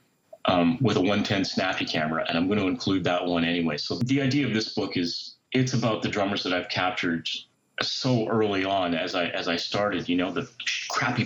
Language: English